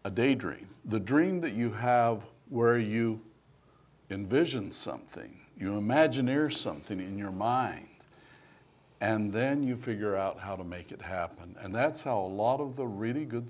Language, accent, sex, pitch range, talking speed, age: English, American, male, 100-135 Hz, 160 wpm, 60-79